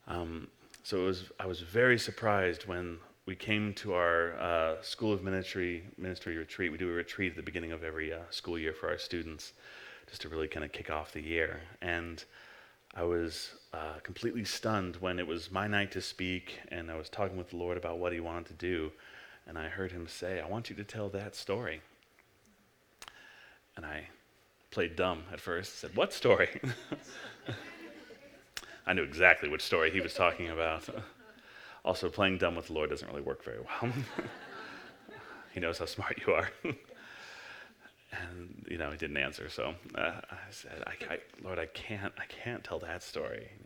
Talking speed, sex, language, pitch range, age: 190 wpm, male, English, 85-105 Hz, 30-49